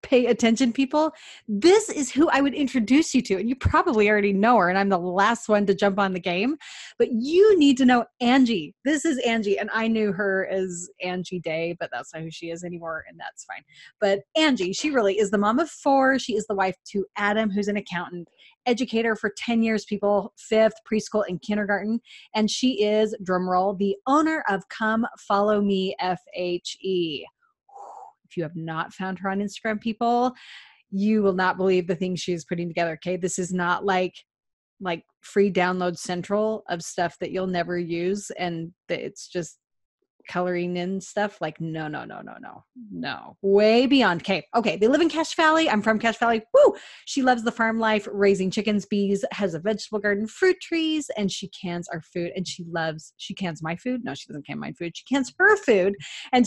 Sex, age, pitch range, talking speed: female, 30-49, 185-240 Hz, 200 wpm